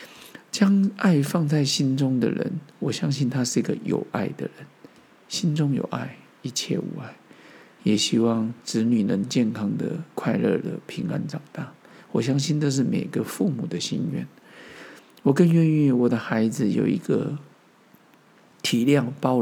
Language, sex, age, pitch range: Chinese, male, 50-69, 135-180 Hz